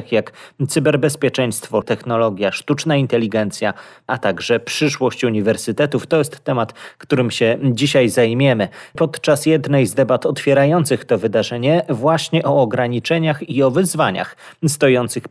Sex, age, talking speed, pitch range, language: male, 30-49, 120 wpm, 115-145 Hz, Polish